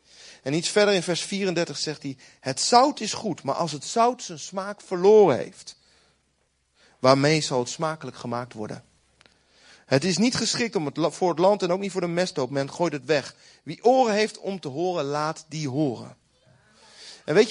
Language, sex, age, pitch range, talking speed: Dutch, male, 40-59, 145-230 Hz, 190 wpm